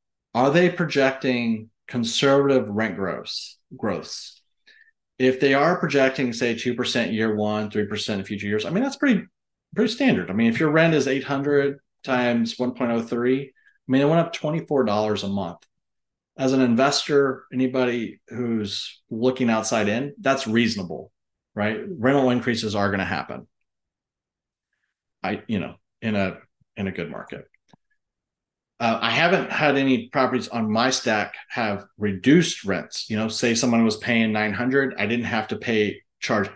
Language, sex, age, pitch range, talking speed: English, male, 30-49, 110-135 Hz, 160 wpm